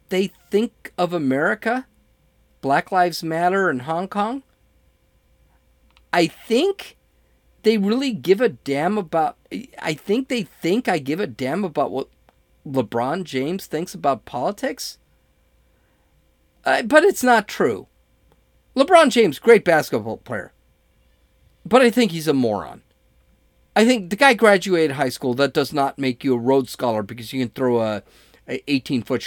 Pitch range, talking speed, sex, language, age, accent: 115-190 Hz, 145 wpm, male, English, 40-59, American